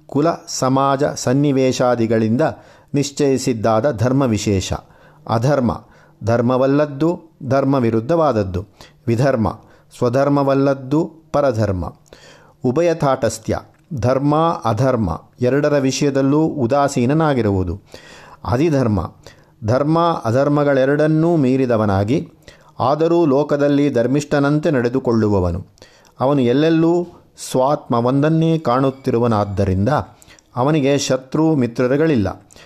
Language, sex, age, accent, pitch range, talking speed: Kannada, male, 50-69, native, 115-150 Hz, 65 wpm